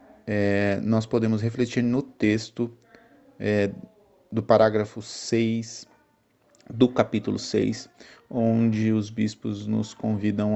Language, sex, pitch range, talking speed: Portuguese, male, 100-125 Hz, 100 wpm